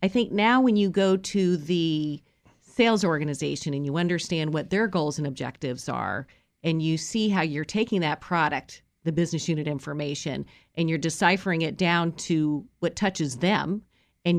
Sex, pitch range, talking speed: female, 150-185 Hz, 170 wpm